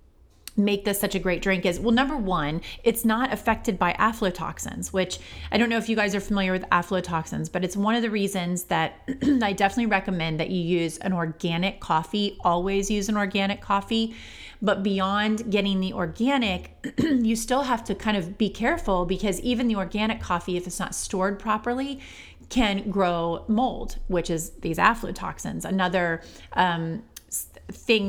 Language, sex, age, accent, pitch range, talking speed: English, female, 30-49, American, 175-215 Hz, 170 wpm